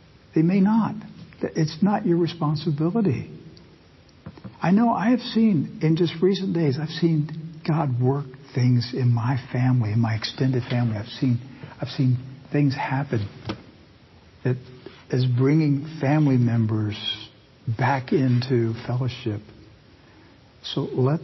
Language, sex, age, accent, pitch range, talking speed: English, male, 60-79, American, 115-140 Hz, 125 wpm